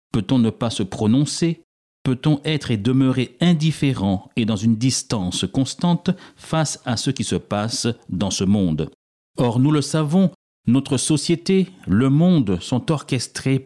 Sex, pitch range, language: male, 105-150 Hz, French